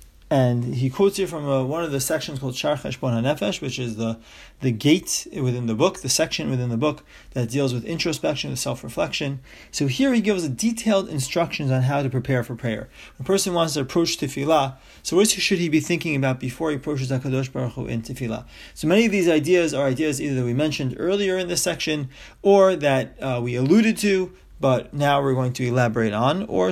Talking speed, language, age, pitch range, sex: 210 wpm, English, 30-49, 130-170 Hz, male